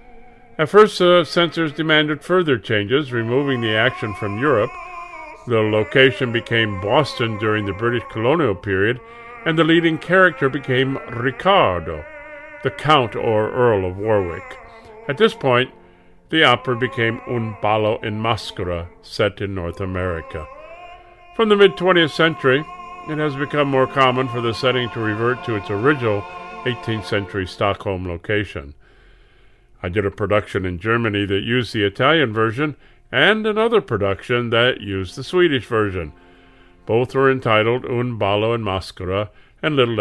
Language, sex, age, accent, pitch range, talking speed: English, male, 50-69, American, 105-150 Hz, 145 wpm